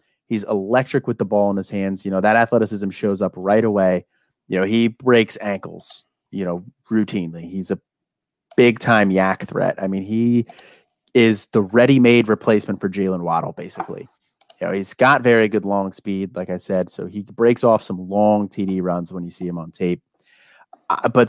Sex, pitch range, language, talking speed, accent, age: male, 95-120 Hz, English, 185 wpm, American, 30-49